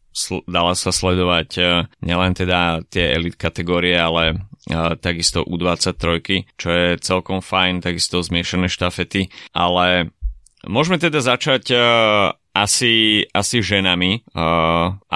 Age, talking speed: 30-49, 120 wpm